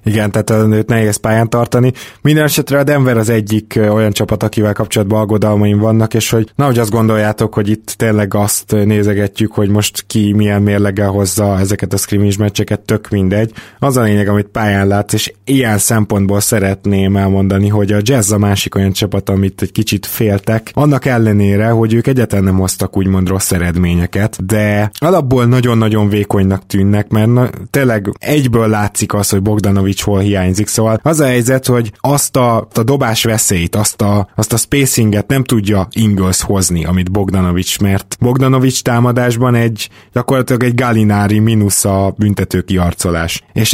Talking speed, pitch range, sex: 165 wpm, 100-120 Hz, male